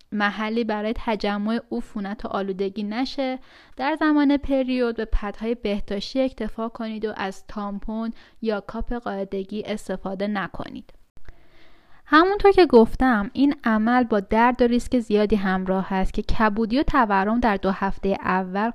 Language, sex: Persian, female